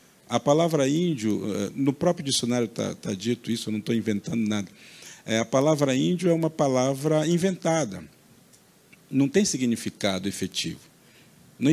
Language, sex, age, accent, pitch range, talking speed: Portuguese, male, 50-69, Brazilian, 115-160 Hz, 145 wpm